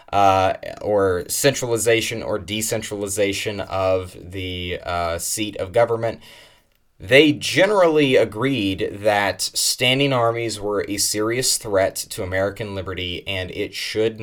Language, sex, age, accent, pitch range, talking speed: English, male, 20-39, American, 100-120 Hz, 115 wpm